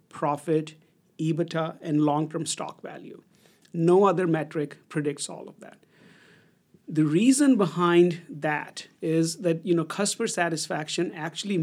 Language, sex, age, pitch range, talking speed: English, male, 50-69, 155-180 Hz, 125 wpm